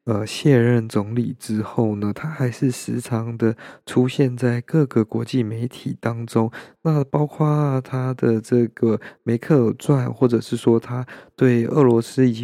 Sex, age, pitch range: male, 20-39, 115-130 Hz